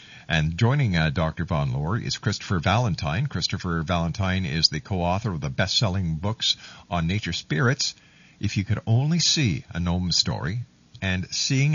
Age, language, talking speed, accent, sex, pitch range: 50-69, English, 160 wpm, American, male, 95-130 Hz